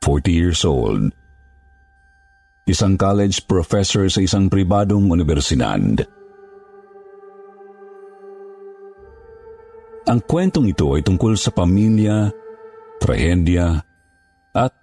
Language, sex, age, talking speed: Filipino, male, 50-69, 75 wpm